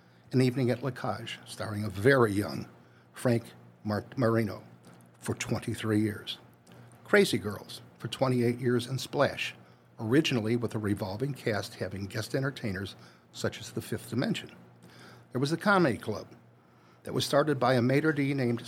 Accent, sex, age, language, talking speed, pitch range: American, male, 60-79, English, 150 wpm, 105-140 Hz